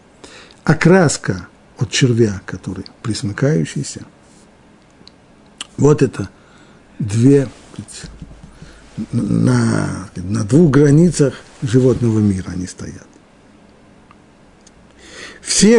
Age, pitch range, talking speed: 50-69, 105-155 Hz, 65 wpm